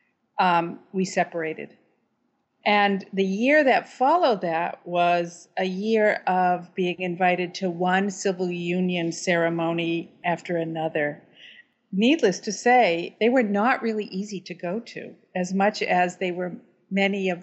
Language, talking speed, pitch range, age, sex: English, 140 wpm, 175-210 Hz, 50-69, female